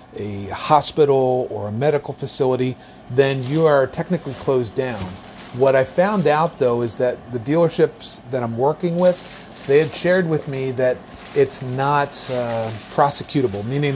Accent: American